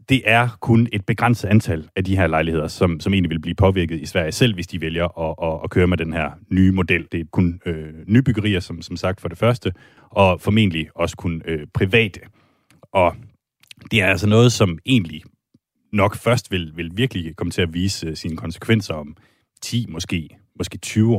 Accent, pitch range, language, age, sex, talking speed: native, 85-110 Hz, Danish, 30-49, male, 200 wpm